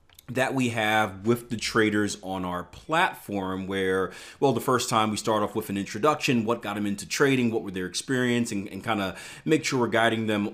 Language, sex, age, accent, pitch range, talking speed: English, male, 30-49, American, 95-115 Hz, 215 wpm